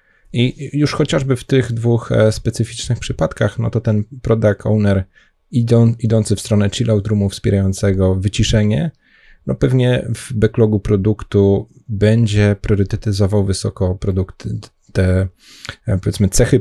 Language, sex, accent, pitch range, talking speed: Polish, male, native, 95-110 Hz, 120 wpm